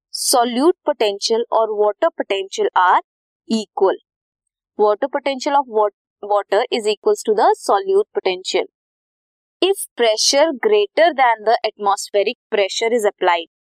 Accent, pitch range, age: native, 215-360 Hz, 20-39